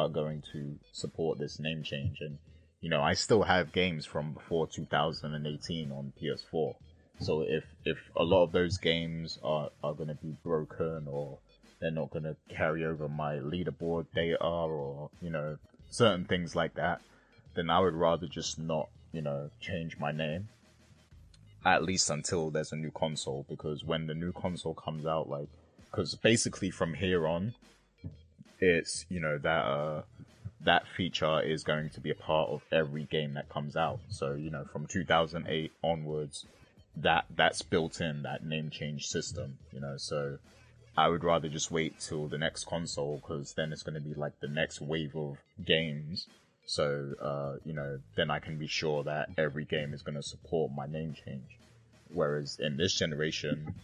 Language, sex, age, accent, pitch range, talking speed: English, male, 20-39, British, 75-80 Hz, 180 wpm